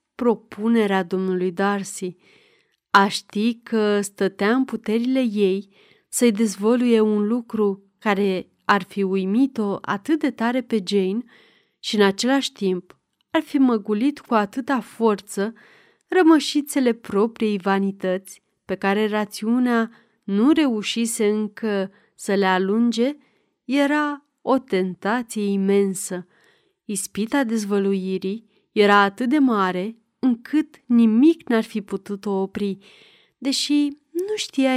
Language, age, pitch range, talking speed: Romanian, 30-49, 200-245 Hz, 110 wpm